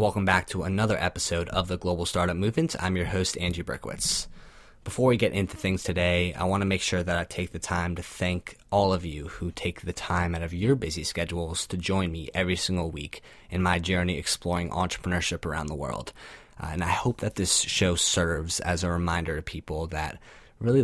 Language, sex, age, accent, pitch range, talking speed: English, male, 20-39, American, 85-95 Hz, 215 wpm